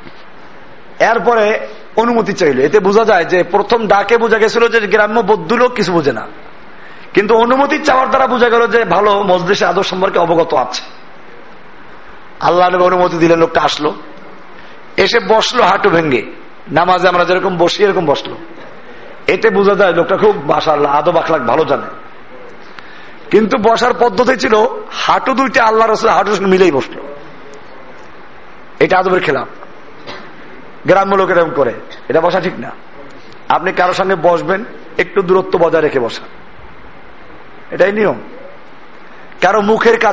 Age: 50-69